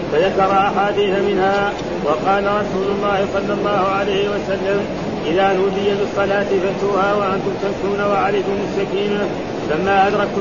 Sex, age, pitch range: male, 40-59, 195-200 Hz